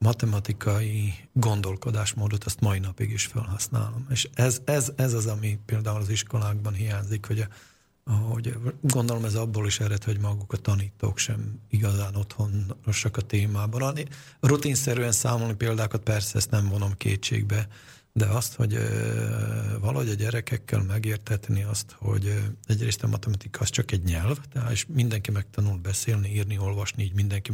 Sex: male